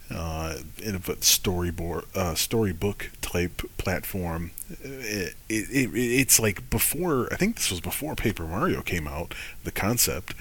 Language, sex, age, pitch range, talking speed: English, male, 30-49, 80-95 Hz, 125 wpm